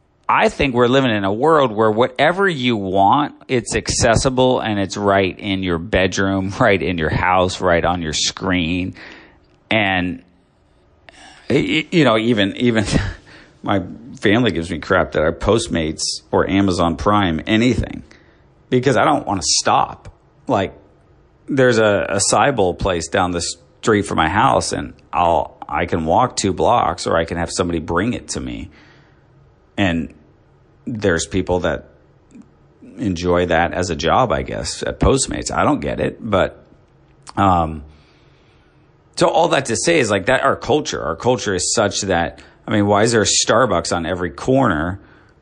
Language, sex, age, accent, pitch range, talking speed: English, male, 40-59, American, 90-115 Hz, 165 wpm